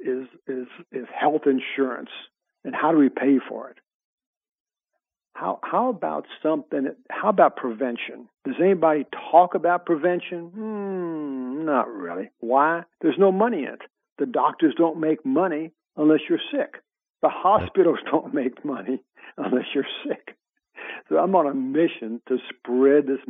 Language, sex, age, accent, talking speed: English, male, 60-79, American, 145 wpm